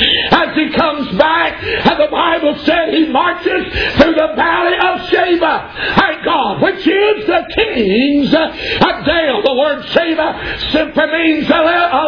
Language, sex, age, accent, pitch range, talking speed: English, male, 60-79, American, 310-390 Hz, 145 wpm